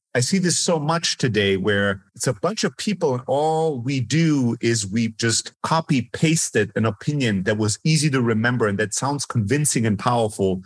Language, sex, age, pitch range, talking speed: English, male, 40-59, 110-155 Hz, 185 wpm